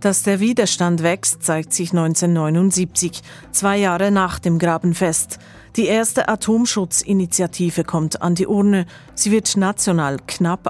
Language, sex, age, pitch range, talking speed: German, female, 40-59, 165-200 Hz, 130 wpm